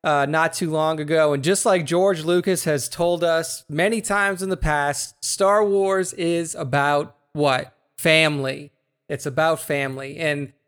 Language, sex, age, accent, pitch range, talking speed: English, male, 30-49, American, 140-165 Hz, 155 wpm